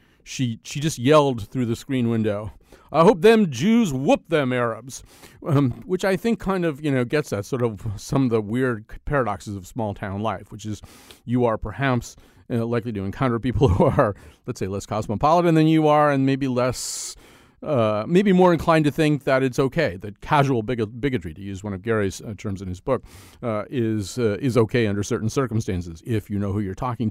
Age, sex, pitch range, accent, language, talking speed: 40-59, male, 105-140 Hz, American, English, 205 wpm